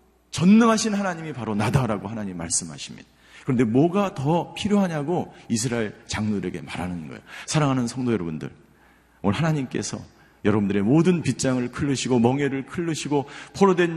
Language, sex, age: Korean, male, 40-59